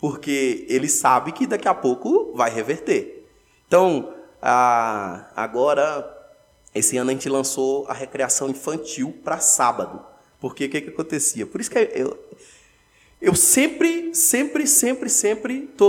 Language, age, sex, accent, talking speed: Portuguese, 20-39, male, Brazilian, 140 wpm